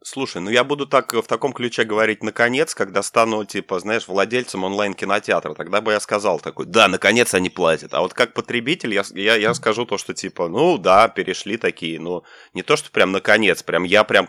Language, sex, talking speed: Ukrainian, male, 215 wpm